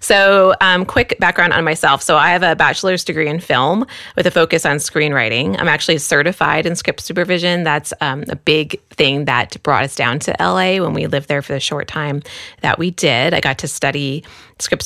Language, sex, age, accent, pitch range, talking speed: English, female, 20-39, American, 145-180 Hz, 210 wpm